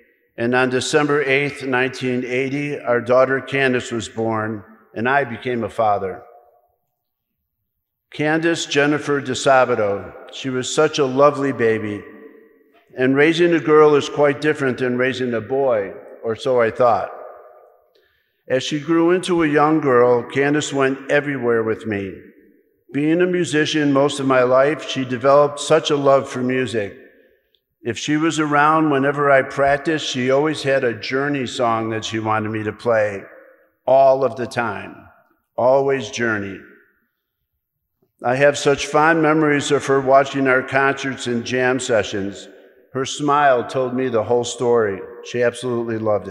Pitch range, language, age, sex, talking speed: 120-145 Hz, English, 50-69, male, 145 wpm